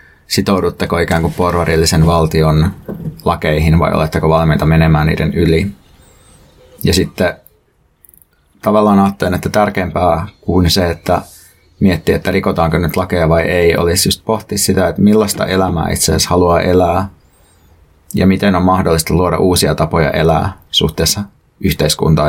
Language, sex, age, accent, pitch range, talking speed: Finnish, male, 30-49, native, 80-95 Hz, 130 wpm